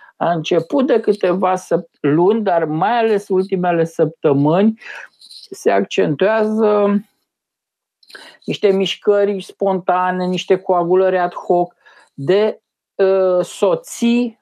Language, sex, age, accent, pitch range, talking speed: Romanian, male, 50-69, native, 165-210 Hz, 85 wpm